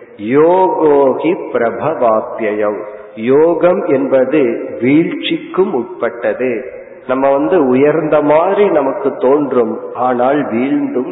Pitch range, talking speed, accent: 125-175 Hz, 55 wpm, native